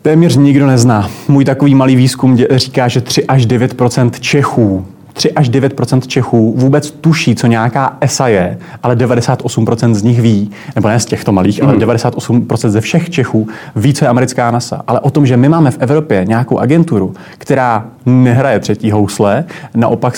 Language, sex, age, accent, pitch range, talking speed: Czech, male, 30-49, native, 110-135 Hz, 175 wpm